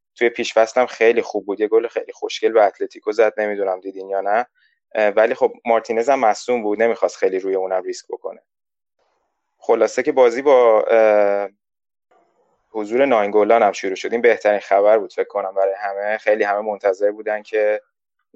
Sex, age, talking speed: male, 20-39, 160 wpm